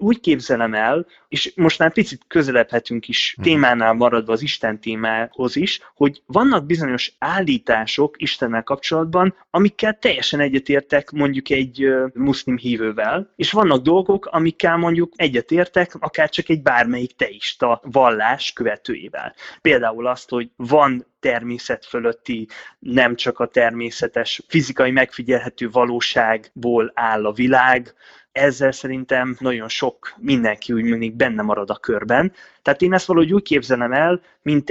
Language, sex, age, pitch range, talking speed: Hungarian, male, 20-39, 120-160 Hz, 130 wpm